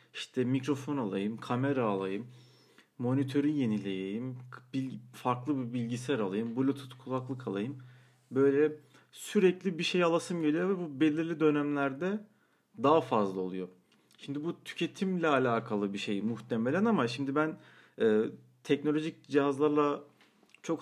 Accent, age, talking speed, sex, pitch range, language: native, 40-59, 120 wpm, male, 120-150 Hz, Turkish